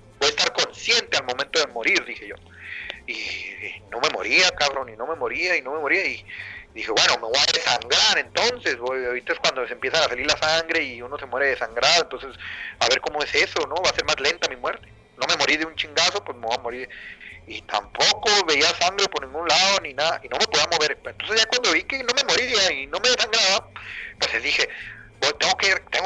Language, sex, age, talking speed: Spanish, male, 40-59, 235 wpm